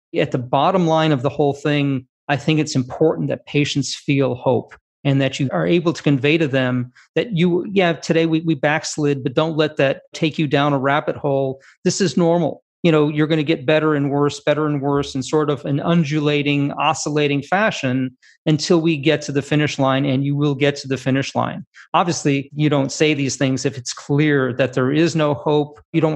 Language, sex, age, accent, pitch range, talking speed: English, male, 40-59, American, 140-160 Hz, 220 wpm